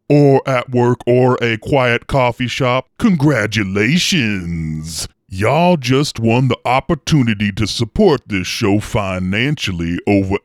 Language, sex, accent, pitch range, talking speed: English, female, American, 95-135 Hz, 115 wpm